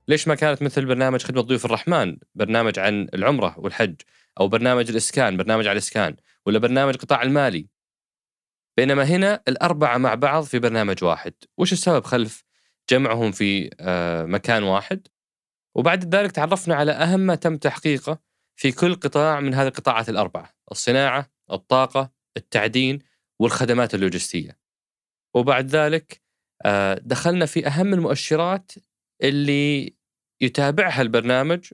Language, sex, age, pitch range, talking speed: Arabic, male, 20-39, 115-155 Hz, 125 wpm